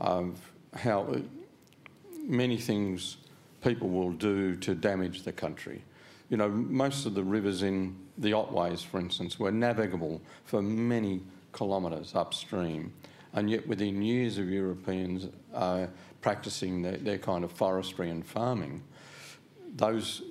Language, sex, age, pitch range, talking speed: English, male, 50-69, 100-135 Hz, 130 wpm